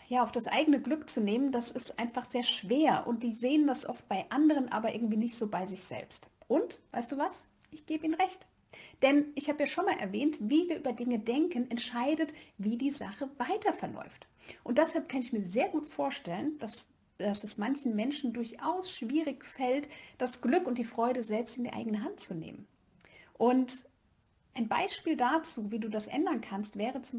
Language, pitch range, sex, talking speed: German, 230-295 Hz, female, 200 wpm